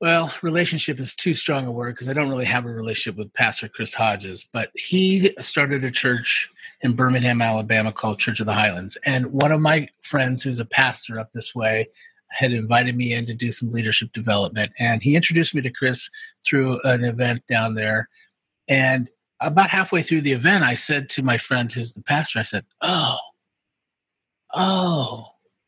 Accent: American